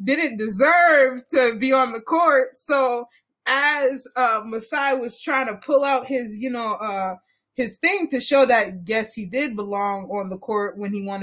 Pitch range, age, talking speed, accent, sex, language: 195-290 Hz, 20-39, 185 wpm, American, female, English